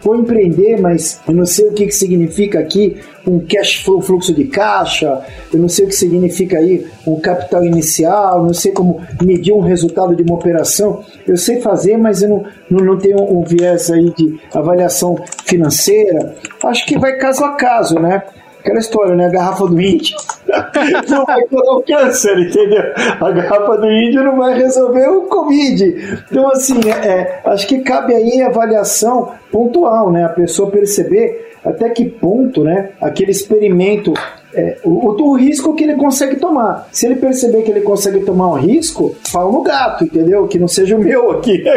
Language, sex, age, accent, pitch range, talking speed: Portuguese, male, 50-69, Brazilian, 180-260 Hz, 180 wpm